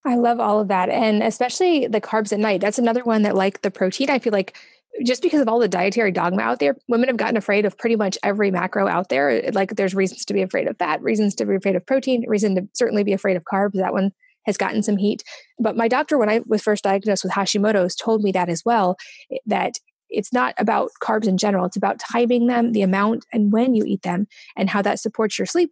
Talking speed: 250 wpm